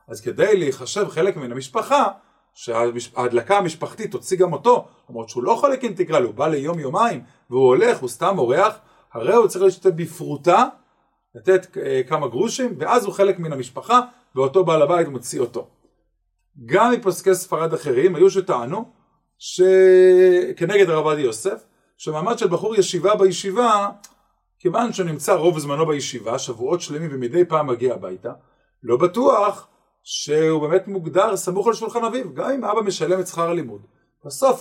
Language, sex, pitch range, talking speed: Hebrew, male, 155-235 Hz, 150 wpm